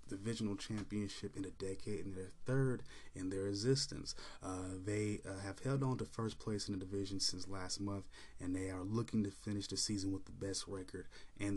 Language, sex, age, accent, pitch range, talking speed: English, male, 20-39, American, 95-110 Hz, 200 wpm